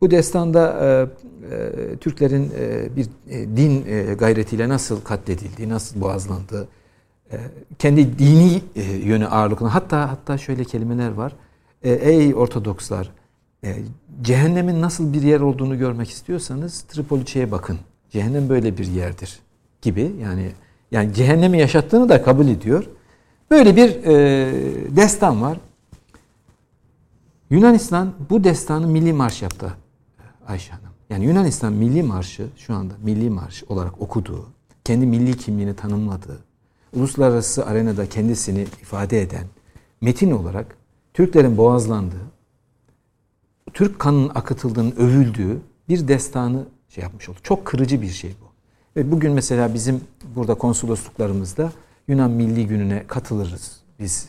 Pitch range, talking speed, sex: 105-145 Hz, 125 wpm, male